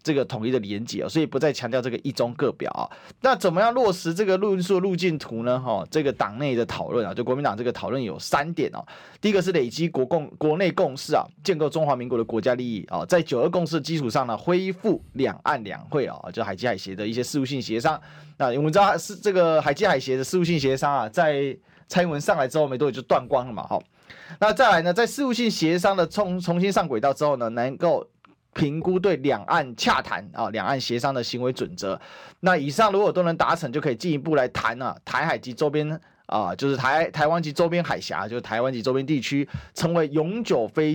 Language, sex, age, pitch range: Chinese, male, 30-49, 130-180 Hz